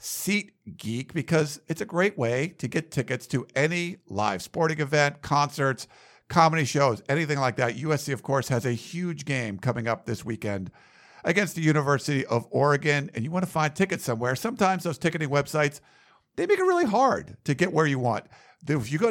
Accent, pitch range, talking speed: American, 125-160 Hz, 190 wpm